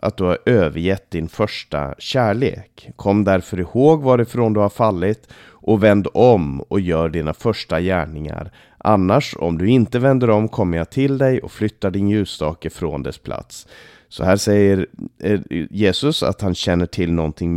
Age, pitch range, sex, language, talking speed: 30-49, 85-110 Hz, male, Swedish, 165 wpm